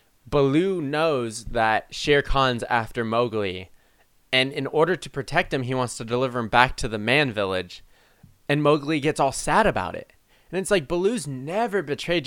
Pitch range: 110-145 Hz